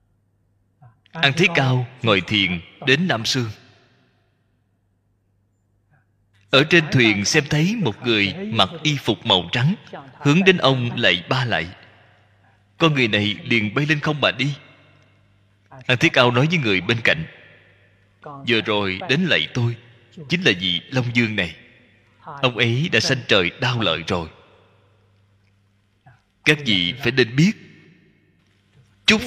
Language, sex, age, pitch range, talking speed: Vietnamese, male, 20-39, 105-150 Hz, 140 wpm